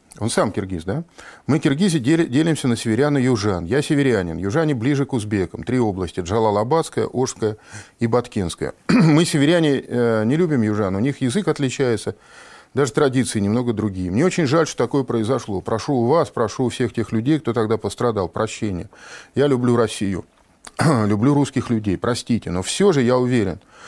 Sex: male